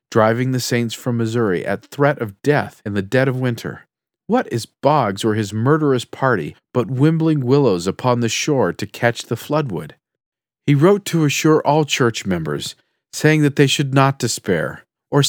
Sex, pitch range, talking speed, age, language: male, 115-145 Hz, 175 wpm, 40-59, English